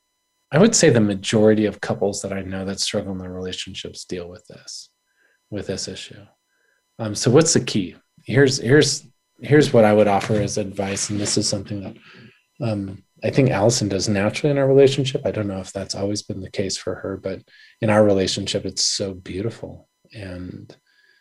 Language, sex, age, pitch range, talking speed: English, male, 30-49, 95-120 Hz, 190 wpm